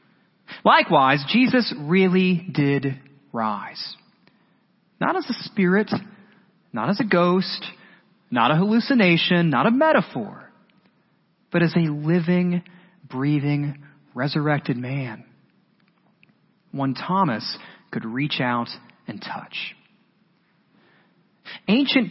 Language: English